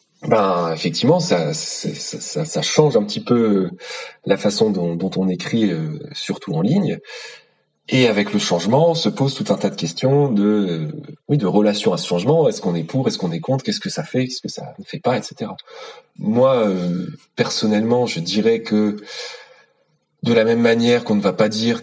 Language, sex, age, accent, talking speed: French, male, 30-49, French, 200 wpm